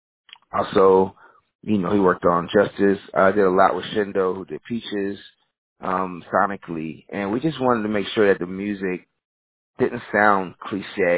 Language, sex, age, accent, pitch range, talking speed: English, male, 30-49, American, 85-100 Hz, 165 wpm